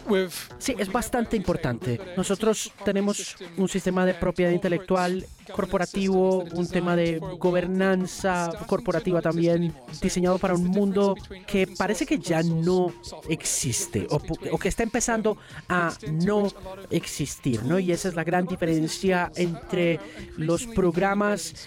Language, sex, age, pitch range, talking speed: Spanish, male, 30-49, 160-190 Hz, 125 wpm